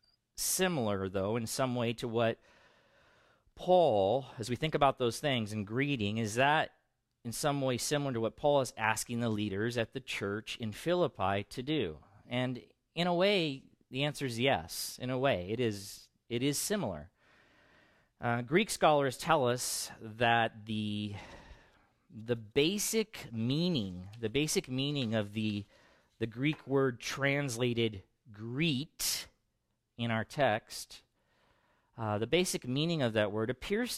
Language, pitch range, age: English, 110-150 Hz, 40-59